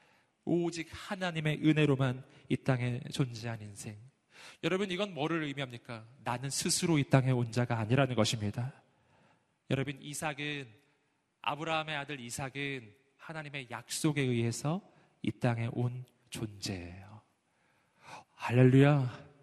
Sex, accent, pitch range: male, native, 135-215 Hz